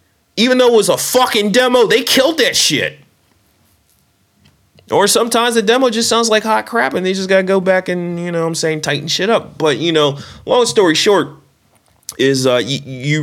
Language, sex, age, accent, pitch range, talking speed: English, male, 30-49, American, 110-160 Hz, 205 wpm